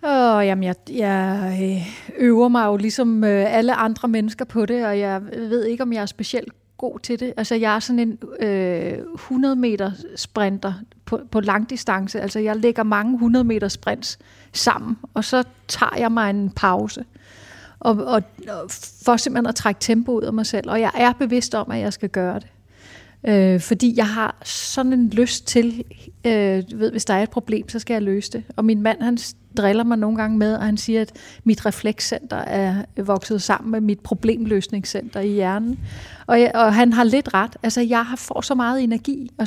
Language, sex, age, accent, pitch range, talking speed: Danish, female, 30-49, native, 205-240 Hz, 200 wpm